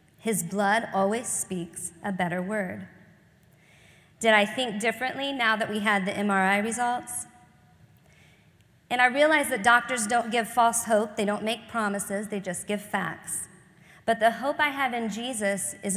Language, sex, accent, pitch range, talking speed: English, female, American, 190-235 Hz, 160 wpm